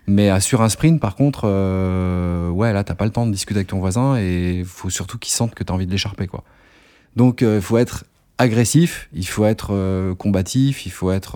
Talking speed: 230 wpm